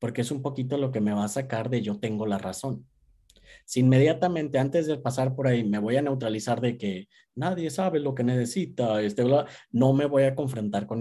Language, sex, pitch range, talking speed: Spanish, male, 110-135 Hz, 225 wpm